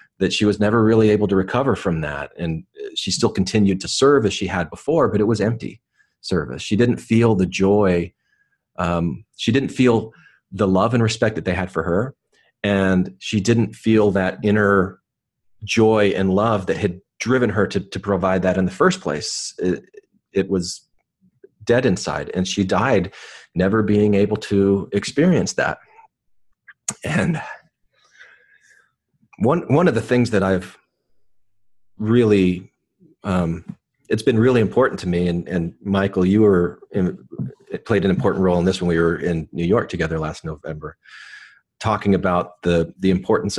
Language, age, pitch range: English, 40-59, 90-110 Hz